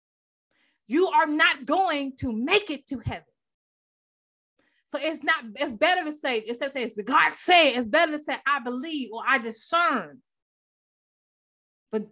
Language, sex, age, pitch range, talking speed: English, female, 20-39, 205-265 Hz, 155 wpm